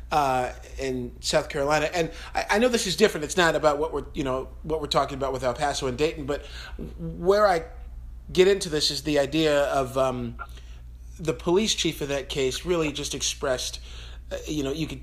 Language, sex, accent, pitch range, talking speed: English, male, American, 130-165 Hz, 210 wpm